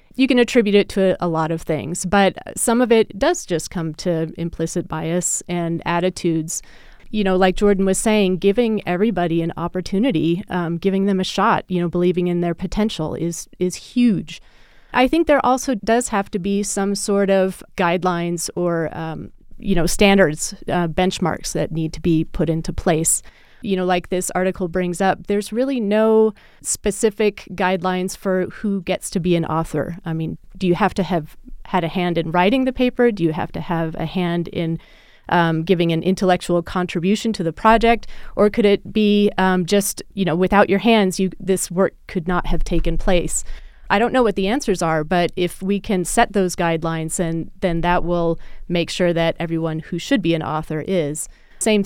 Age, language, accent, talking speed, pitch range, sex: 30-49, English, American, 190 wpm, 170-200 Hz, female